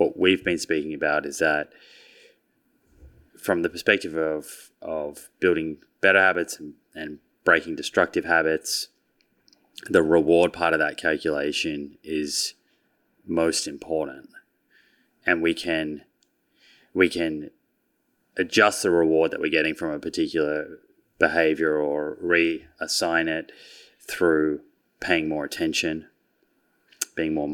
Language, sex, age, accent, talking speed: English, male, 20-39, Australian, 115 wpm